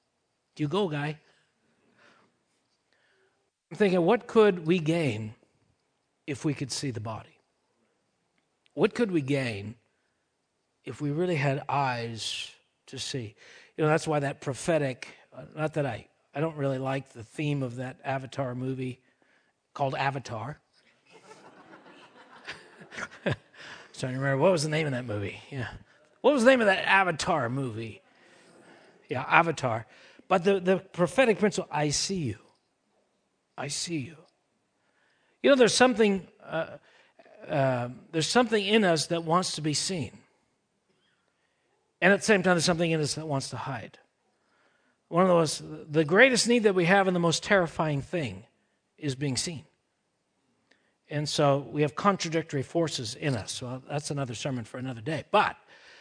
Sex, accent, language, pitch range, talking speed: male, American, English, 130-175 Hz, 150 wpm